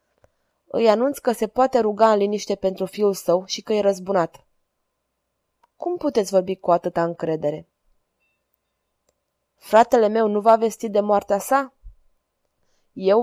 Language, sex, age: Romanian, female, 20-39